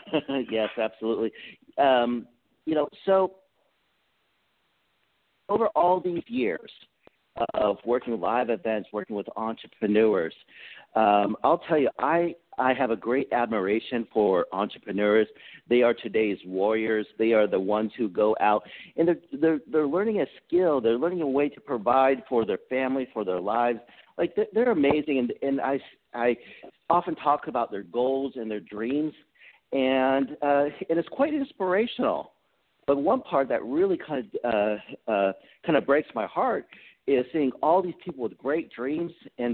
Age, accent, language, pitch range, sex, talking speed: 50-69, American, English, 115-170 Hz, male, 160 wpm